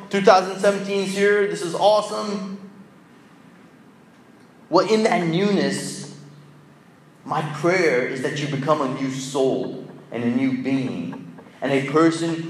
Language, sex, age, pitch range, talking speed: English, male, 30-49, 135-200 Hz, 125 wpm